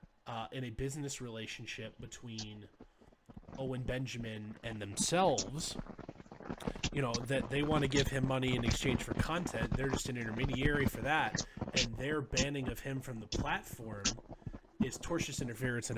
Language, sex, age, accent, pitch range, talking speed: English, male, 20-39, American, 115-135 Hz, 155 wpm